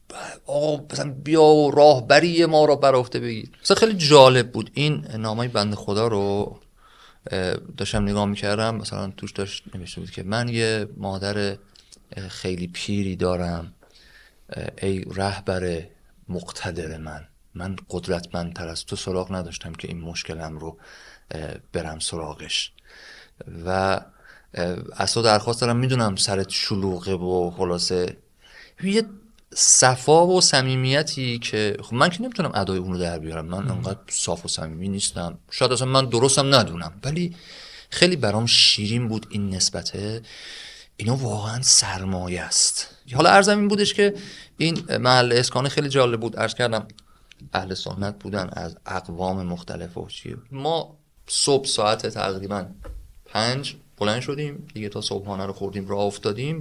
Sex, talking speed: male, 130 wpm